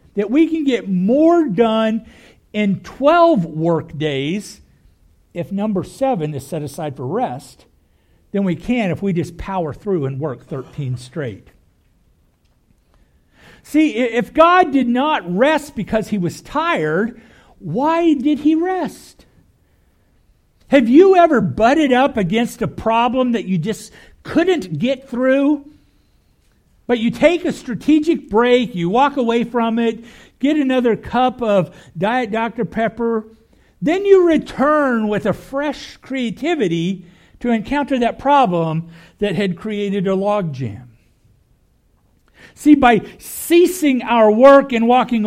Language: English